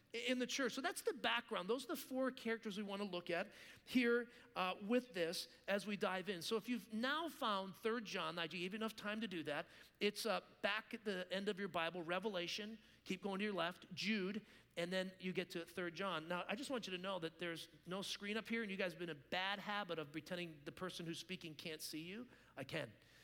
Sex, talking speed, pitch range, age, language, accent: male, 250 wpm, 180-225 Hz, 40-59, English, American